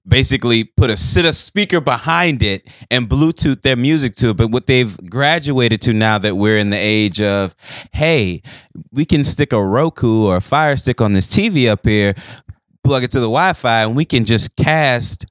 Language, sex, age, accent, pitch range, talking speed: English, male, 20-39, American, 110-170 Hz, 200 wpm